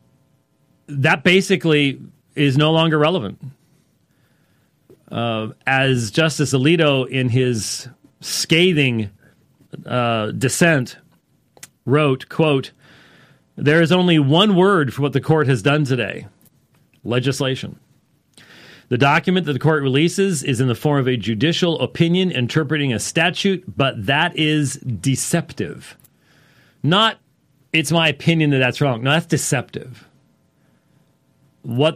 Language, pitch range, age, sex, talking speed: English, 130-165 Hz, 40-59, male, 115 wpm